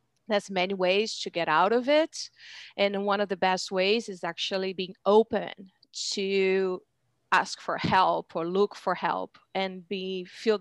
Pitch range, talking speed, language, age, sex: 190-225 Hz, 165 wpm, English, 30-49, female